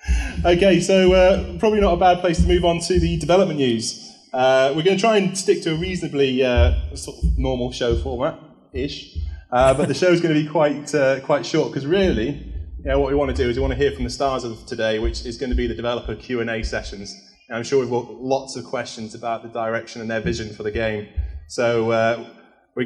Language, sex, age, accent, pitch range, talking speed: English, male, 20-39, British, 115-170 Hz, 240 wpm